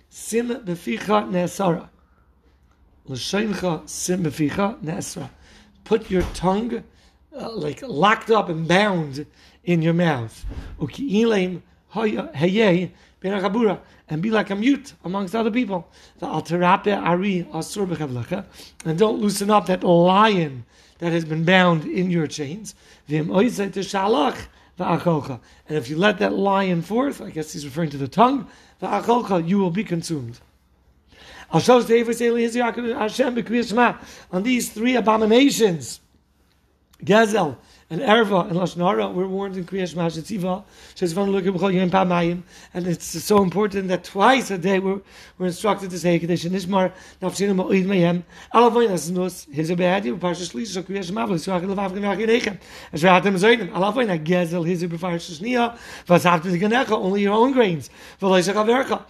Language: English